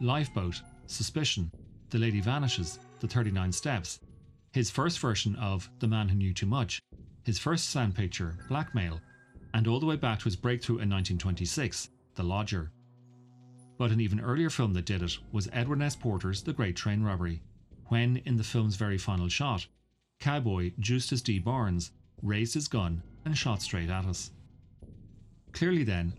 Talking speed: 165 wpm